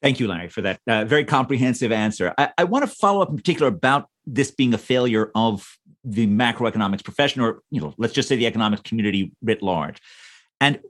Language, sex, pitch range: English, male, 115-155 Hz